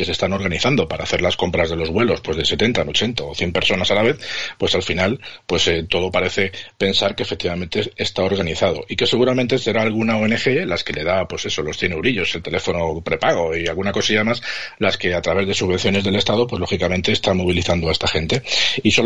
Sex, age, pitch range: male, 40-59, 95-110 Hz